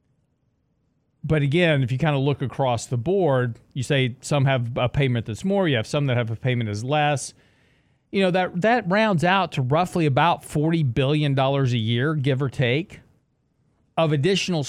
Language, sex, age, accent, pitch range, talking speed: English, male, 40-59, American, 125-160 Hz, 185 wpm